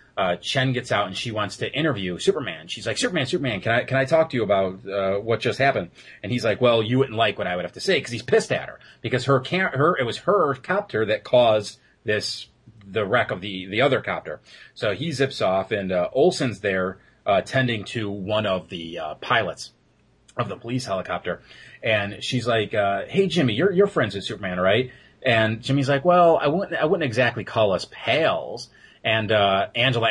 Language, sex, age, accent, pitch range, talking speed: English, male, 30-49, American, 105-135 Hz, 215 wpm